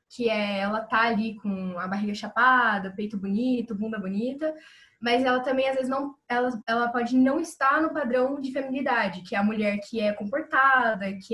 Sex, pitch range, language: female, 210-255 Hz, Portuguese